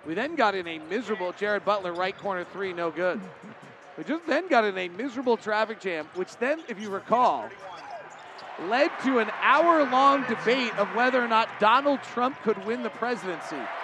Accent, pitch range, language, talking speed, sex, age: American, 190-230 Hz, English, 180 wpm, male, 40-59